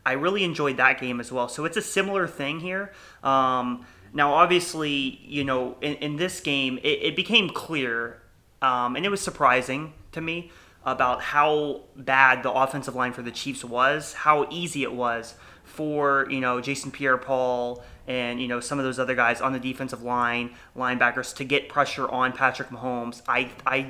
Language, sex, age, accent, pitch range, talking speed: English, male, 30-49, American, 125-145 Hz, 185 wpm